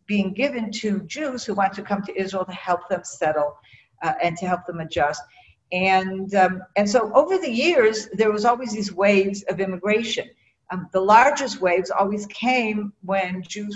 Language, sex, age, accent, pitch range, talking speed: English, female, 50-69, American, 180-235 Hz, 185 wpm